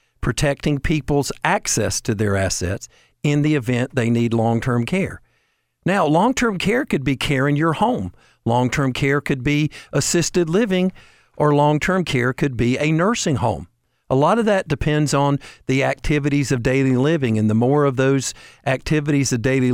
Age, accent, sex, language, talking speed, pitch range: 50-69, American, male, English, 165 wpm, 120-150 Hz